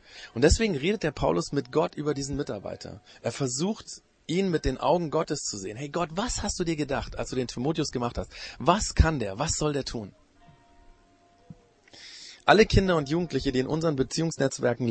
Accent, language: German, German